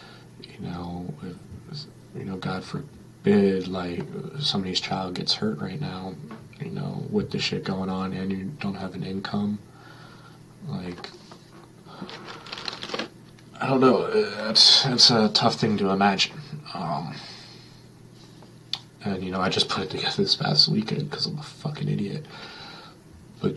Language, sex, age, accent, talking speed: English, male, 30-49, American, 140 wpm